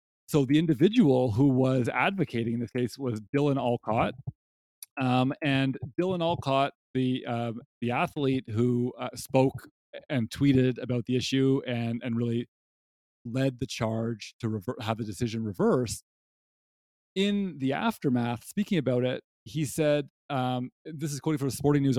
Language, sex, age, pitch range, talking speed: English, male, 30-49, 120-140 Hz, 150 wpm